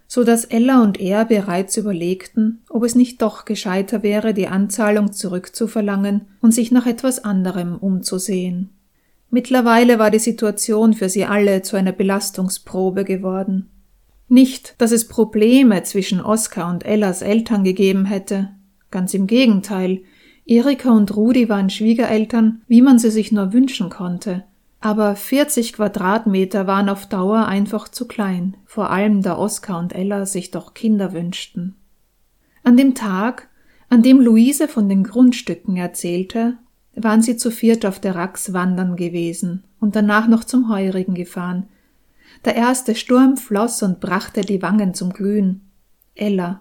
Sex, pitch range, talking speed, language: female, 195-235 Hz, 145 wpm, German